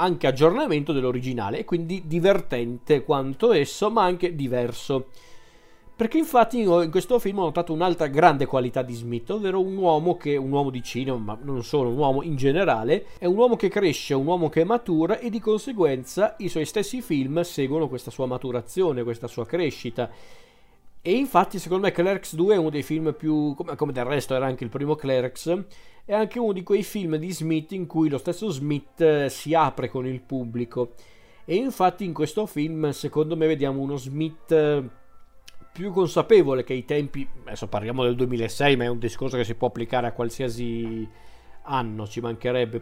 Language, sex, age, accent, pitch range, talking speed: Italian, male, 40-59, native, 125-175 Hz, 185 wpm